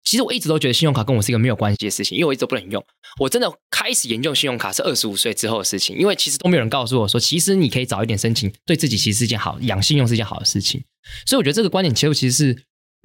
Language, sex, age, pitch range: Chinese, male, 20-39, 115-155 Hz